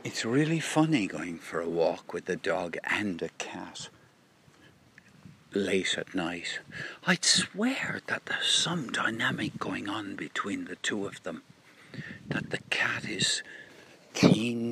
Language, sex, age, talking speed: English, male, 60-79, 140 wpm